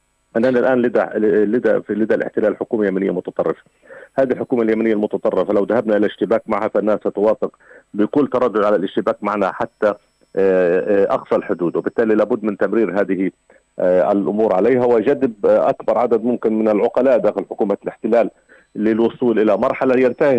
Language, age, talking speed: Arabic, 40-59, 140 wpm